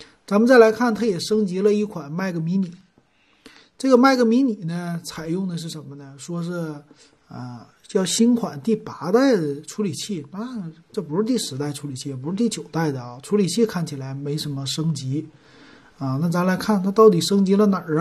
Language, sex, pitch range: Chinese, male, 150-210 Hz